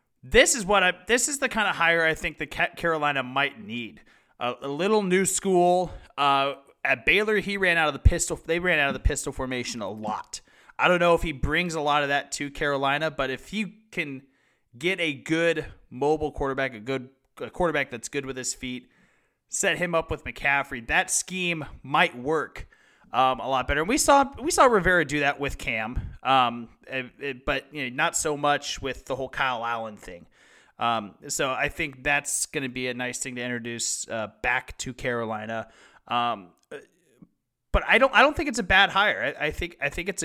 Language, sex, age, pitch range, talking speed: English, male, 30-49, 130-175 Hz, 210 wpm